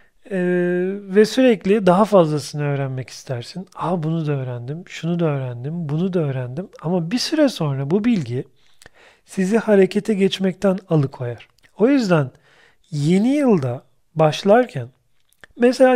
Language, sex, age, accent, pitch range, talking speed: Turkish, male, 40-59, native, 145-205 Hz, 125 wpm